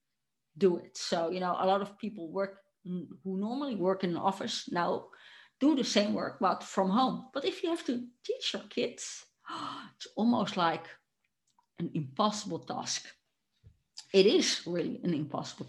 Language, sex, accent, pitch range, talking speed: English, female, Dutch, 190-245 Hz, 165 wpm